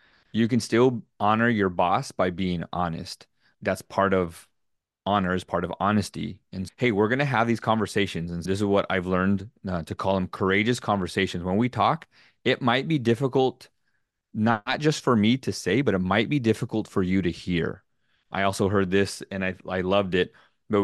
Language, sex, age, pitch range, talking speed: English, male, 30-49, 95-110 Hz, 200 wpm